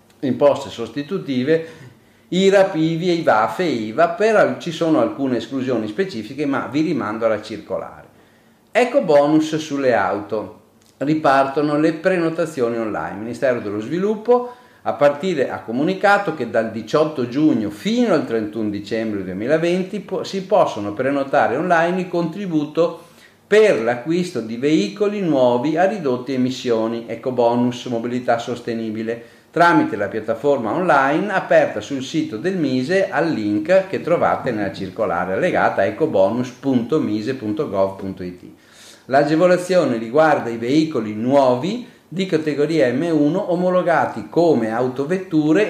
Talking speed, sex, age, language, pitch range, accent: 120 wpm, male, 50-69, Italian, 115-170 Hz, native